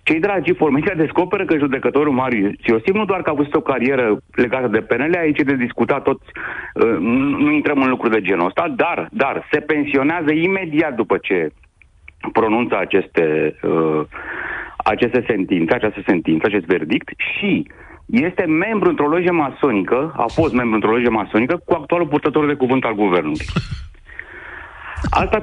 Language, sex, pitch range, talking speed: Romanian, male, 115-175 Hz, 160 wpm